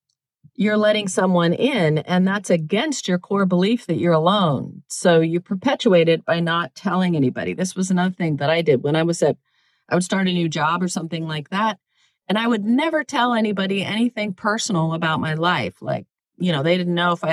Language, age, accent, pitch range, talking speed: English, 40-59, American, 160-205 Hz, 210 wpm